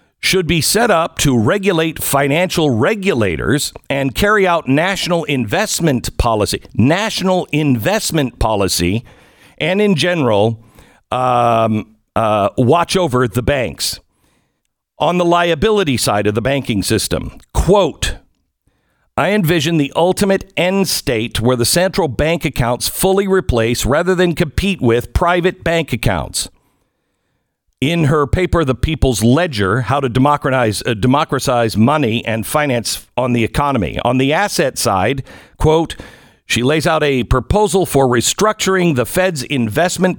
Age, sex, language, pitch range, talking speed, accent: 50-69, male, English, 120-175 Hz, 130 wpm, American